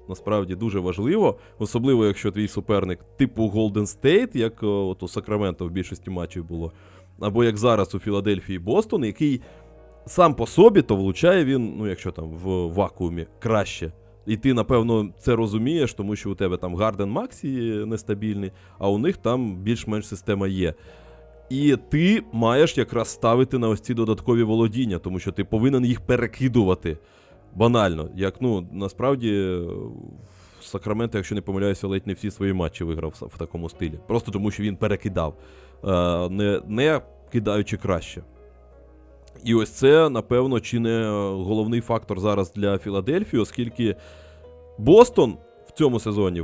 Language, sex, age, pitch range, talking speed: Ukrainian, male, 20-39, 90-115 Hz, 150 wpm